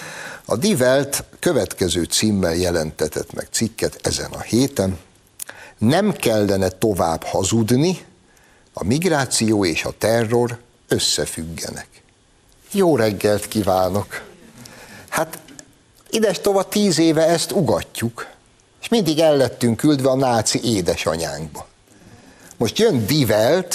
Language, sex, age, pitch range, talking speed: Hungarian, male, 60-79, 105-150 Hz, 105 wpm